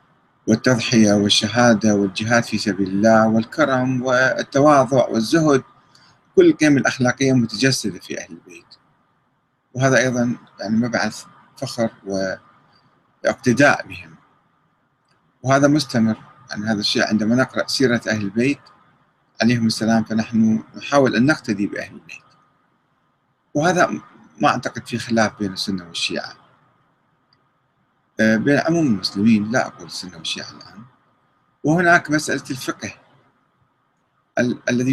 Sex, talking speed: male, 105 wpm